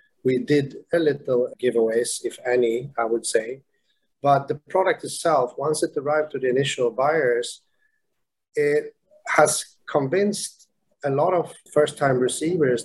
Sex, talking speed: male, 135 wpm